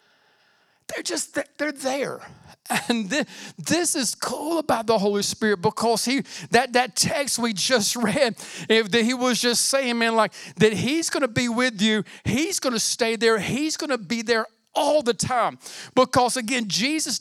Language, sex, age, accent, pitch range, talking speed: English, male, 40-59, American, 205-270 Hz, 180 wpm